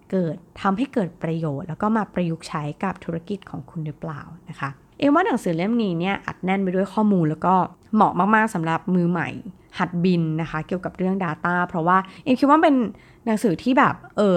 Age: 20-39